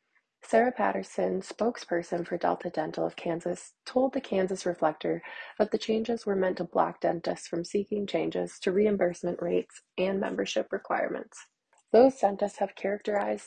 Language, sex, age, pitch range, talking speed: English, female, 20-39, 175-205 Hz, 145 wpm